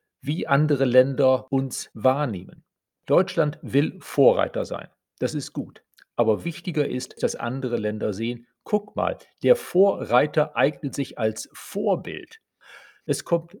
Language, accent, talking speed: German, German, 130 wpm